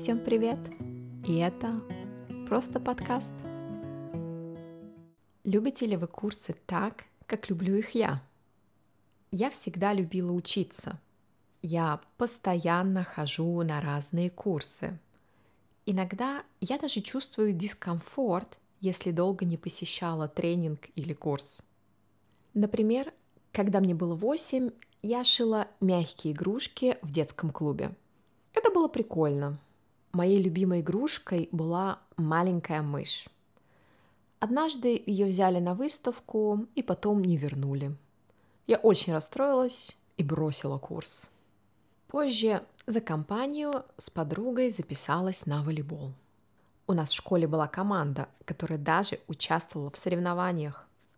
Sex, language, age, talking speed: female, Russian, 20-39, 110 wpm